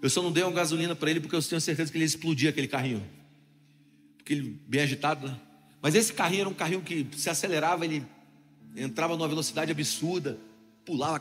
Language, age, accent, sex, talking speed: Portuguese, 40-59, Brazilian, male, 200 wpm